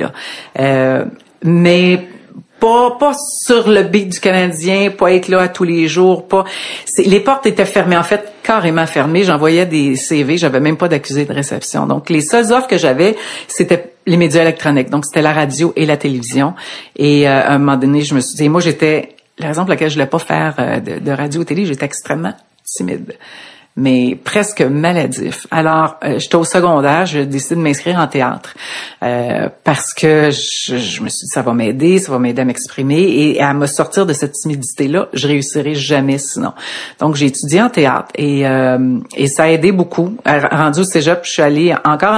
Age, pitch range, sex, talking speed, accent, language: 50-69, 140-175 Hz, female, 200 wpm, Canadian, French